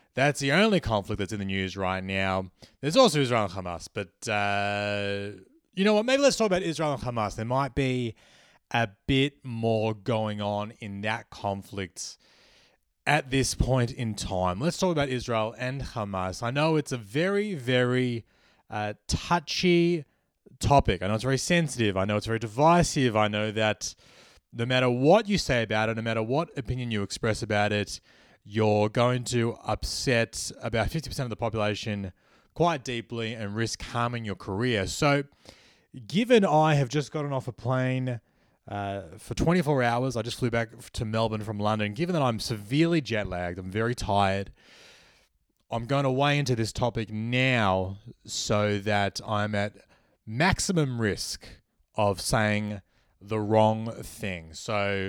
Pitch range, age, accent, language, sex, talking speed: 105-135 Hz, 20-39, Australian, English, male, 165 wpm